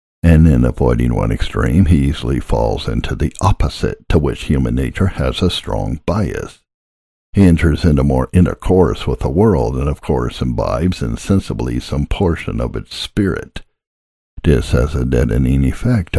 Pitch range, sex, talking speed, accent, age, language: 70-90 Hz, male, 155 wpm, American, 60-79, English